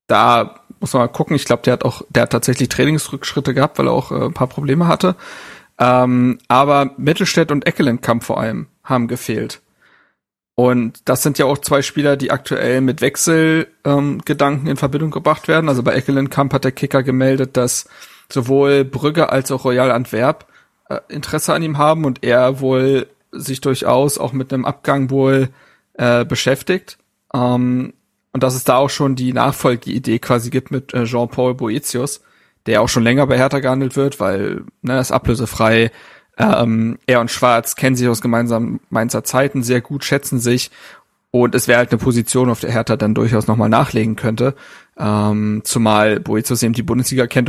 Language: German